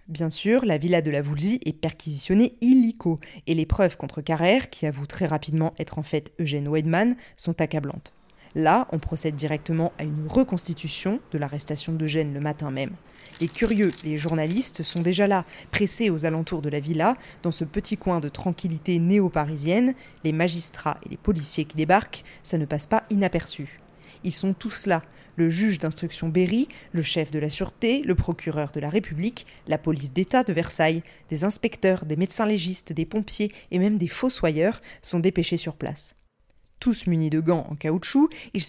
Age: 20-39